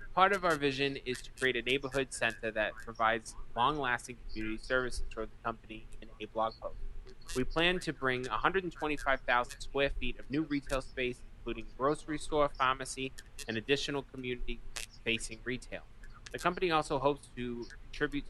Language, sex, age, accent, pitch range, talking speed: English, male, 20-39, American, 115-140 Hz, 155 wpm